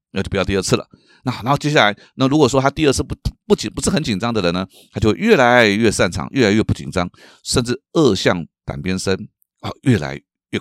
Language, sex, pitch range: Chinese, male, 100-150 Hz